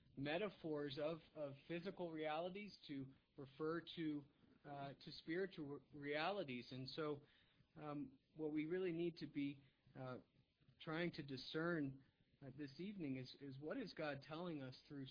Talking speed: 145 wpm